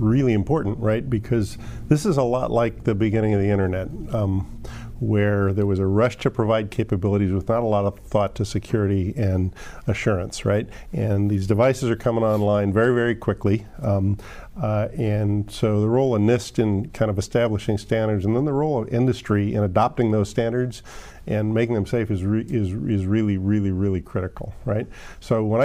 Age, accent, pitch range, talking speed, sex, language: 50-69, American, 105-120 Hz, 185 wpm, male, English